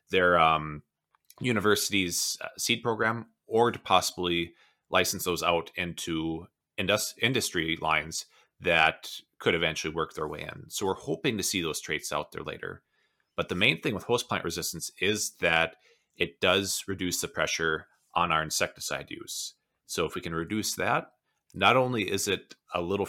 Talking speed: 160 wpm